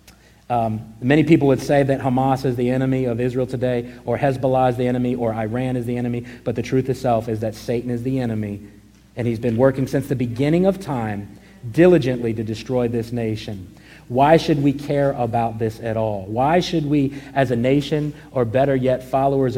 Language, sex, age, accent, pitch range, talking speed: English, male, 50-69, American, 120-140 Hz, 200 wpm